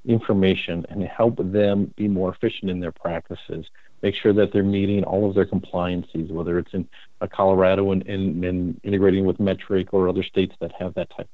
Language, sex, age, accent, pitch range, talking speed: English, male, 50-69, American, 90-100 Hz, 190 wpm